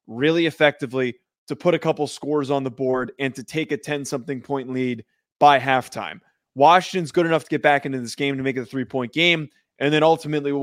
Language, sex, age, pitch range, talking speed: English, male, 20-39, 130-165 Hz, 215 wpm